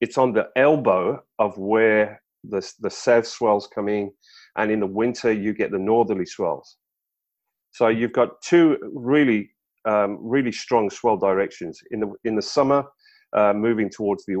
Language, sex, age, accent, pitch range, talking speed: English, male, 40-59, British, 105-140 Hz, 165 wpm